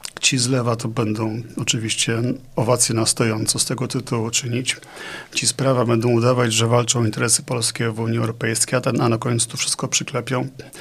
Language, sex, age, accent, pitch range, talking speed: Polish, male, 40-59, native, 115-130 Hz, 185 wpm